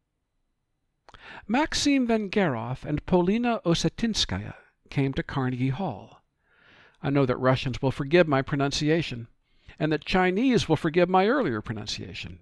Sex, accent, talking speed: male, American, 120 wpm